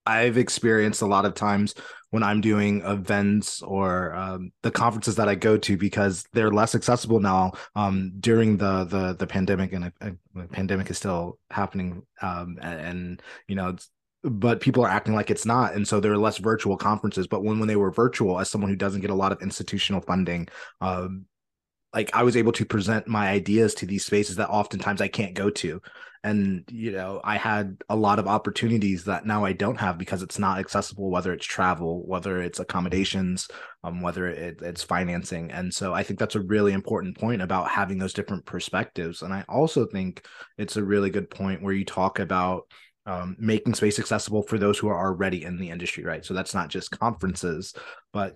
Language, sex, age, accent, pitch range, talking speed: English, male, 20-39, American, 90-105 Hz, 200 wpm